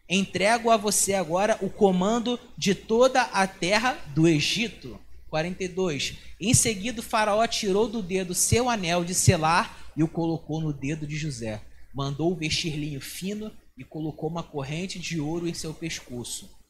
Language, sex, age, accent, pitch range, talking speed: Portuguese, male, 20-39, Brazilian, 140-195 Hz, 160 wpm